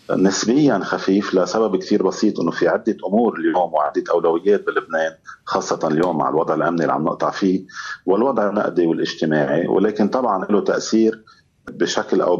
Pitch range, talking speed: 85-110 Hz, 150 wpm